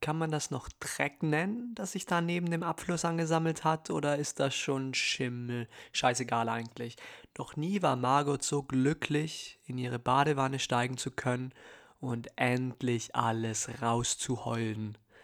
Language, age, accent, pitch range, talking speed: German, 20-39, German, 115-135 Hz, 145 wpm